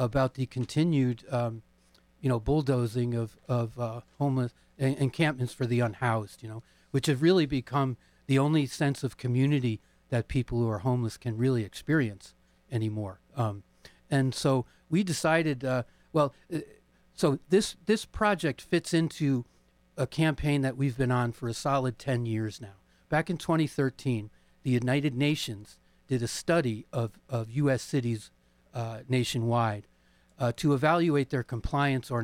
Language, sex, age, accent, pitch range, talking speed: English, male, 40-59, American, 115-140 Hz, 150 wpm